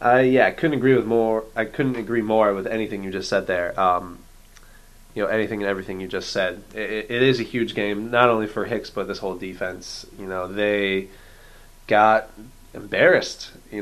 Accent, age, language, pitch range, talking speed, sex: American, 20-39, English, 95-115 Hz, 195 wpm, male